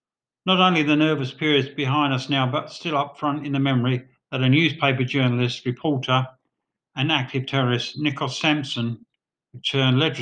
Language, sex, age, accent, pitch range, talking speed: English, male, 50-69, British, 125-145 Hz, 155 wpm